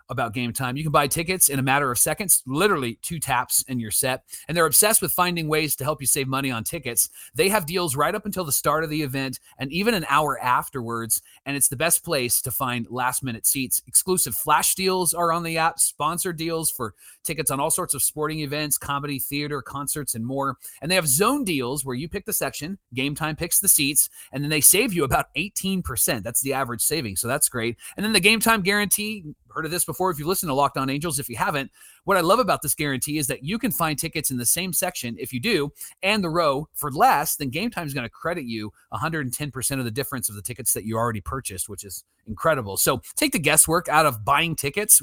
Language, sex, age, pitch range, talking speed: English, male, 30-49, 130-175 Hz, 245 wpm